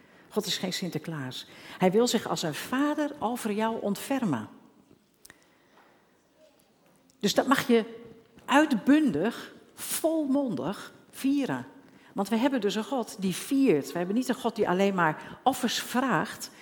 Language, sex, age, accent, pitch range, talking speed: Dutch, female, 50-69, Dutch, 165-225 Hz, 135 wpm